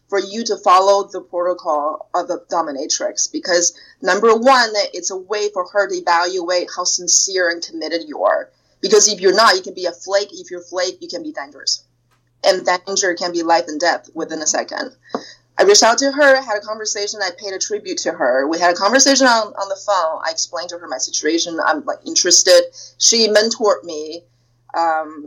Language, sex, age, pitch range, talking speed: English, female, 30-49, 170-215 Hz, 205 wpm